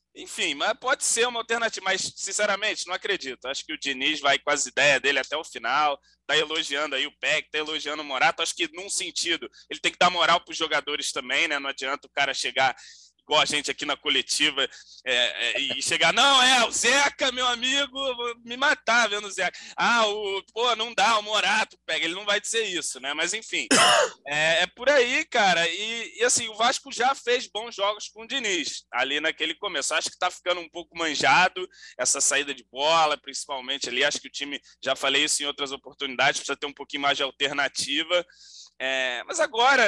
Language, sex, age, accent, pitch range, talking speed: Portuguese, male, 20-39, Brazilian, 145-230 Hz, 210 wpm